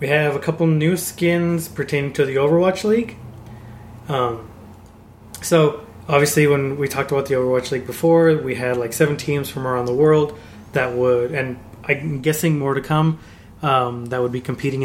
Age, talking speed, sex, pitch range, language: 20-39, 180 wpm, male, 115-150 Hz, English